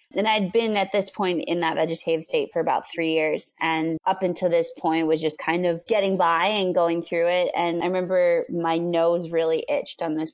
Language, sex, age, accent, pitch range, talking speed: English, female, 20-39, American, 160-185 Hz, 220 wpm